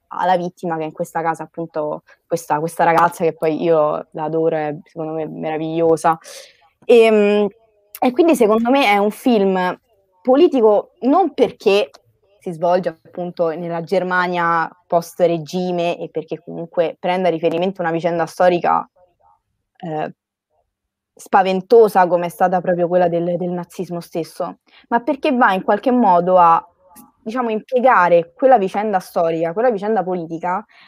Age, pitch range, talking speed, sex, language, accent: 20-39, 170-225 Hz, 140 wpm, female, Italian, native